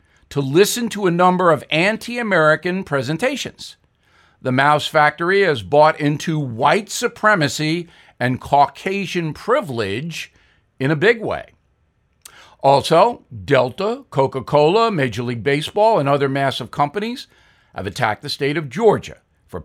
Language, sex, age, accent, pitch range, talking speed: English, male, 50-69, American, 140-195 Hz, 120 wpm